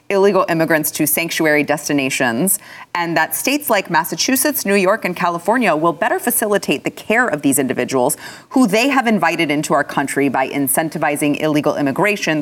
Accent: American